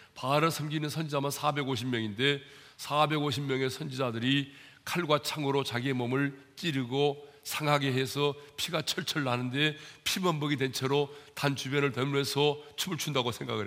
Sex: male